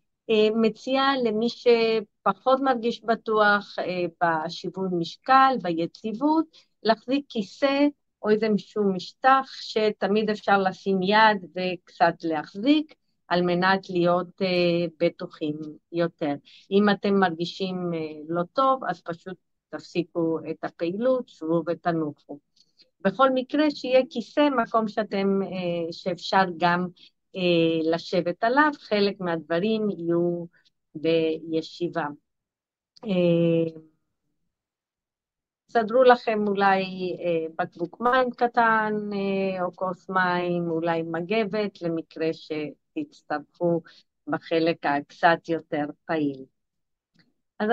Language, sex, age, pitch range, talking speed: Hebrew, female, 40-59, 170-225 Hz, 90 wpm